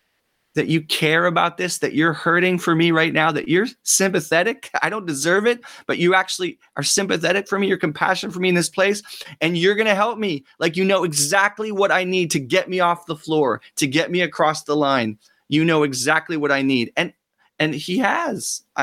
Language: English